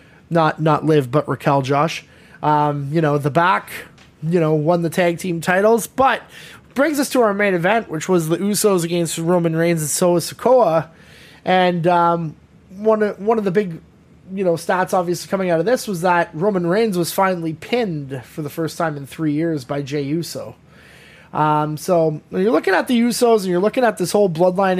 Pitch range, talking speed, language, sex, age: 160-190 Hz, 200 wpm, English, male, 20-39